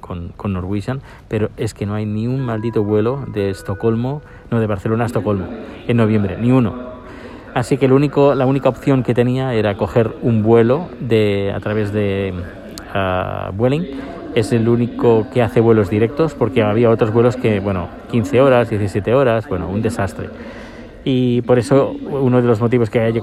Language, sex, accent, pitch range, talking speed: Spanish, male, Spanish, 100-120 Hz, 180 wpm